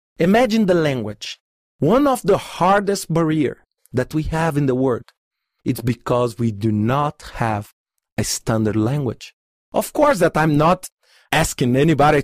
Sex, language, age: male, English, 40-59